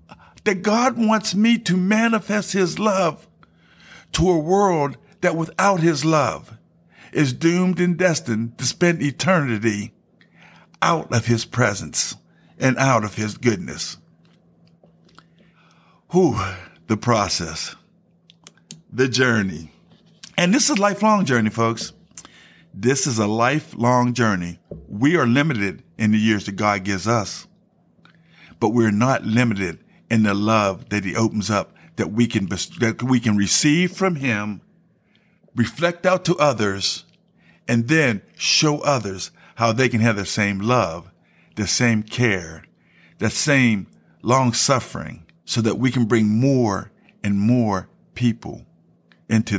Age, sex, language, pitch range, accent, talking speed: 50-69, male, English, 110-170 Hz, American, 130 wpm